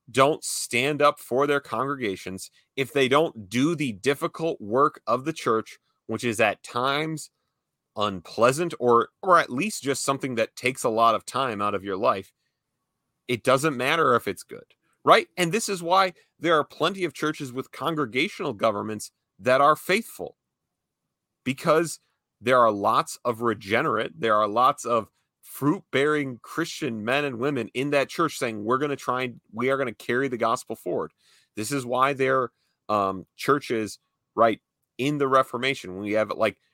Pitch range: 115-145 Hz